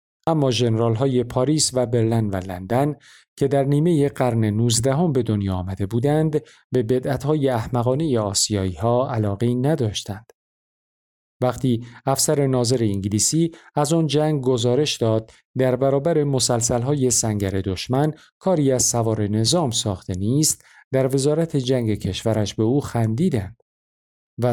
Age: 50-69